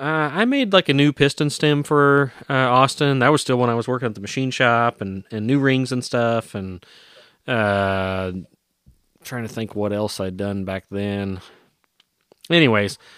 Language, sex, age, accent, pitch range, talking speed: English, male, 30-49, American, 100-135 Hz, 180 wpm